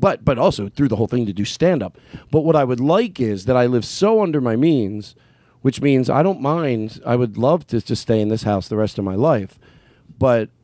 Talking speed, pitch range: 250 wpm, 100-125 Hz